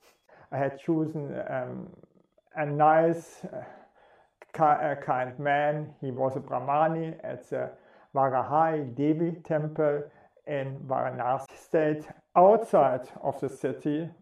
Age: 50-69